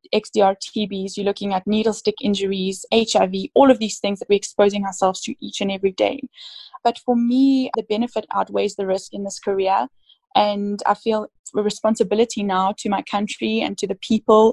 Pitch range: 200-235 Hz